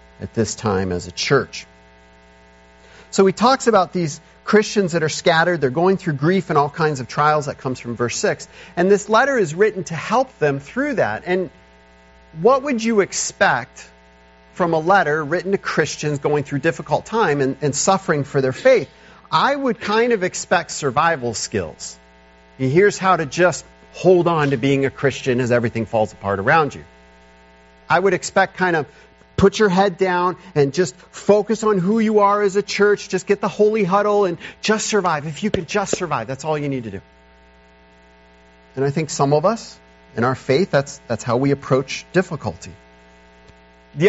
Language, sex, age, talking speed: English, male, 40-59, 190 wpm